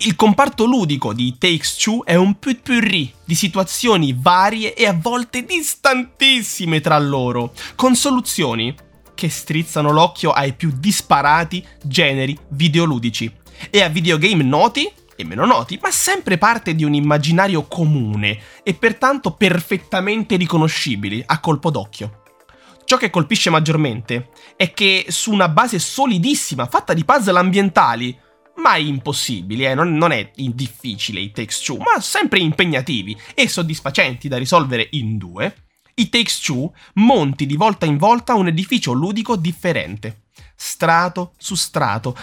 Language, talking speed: Italian, 135 wpm